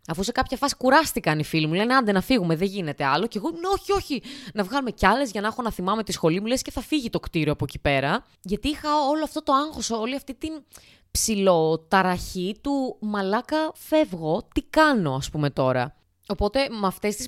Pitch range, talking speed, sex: 160-230 Hz, 220 wpm, female